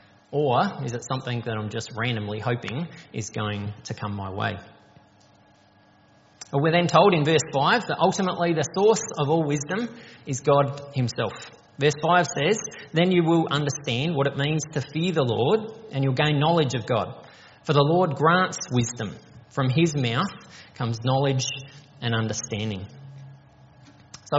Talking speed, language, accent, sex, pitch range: 160 wpm, English, Australian, male, 120-155 Hz